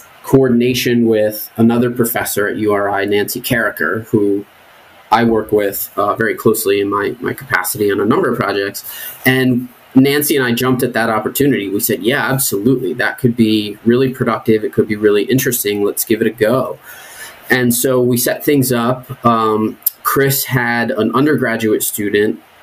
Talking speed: 165 wpm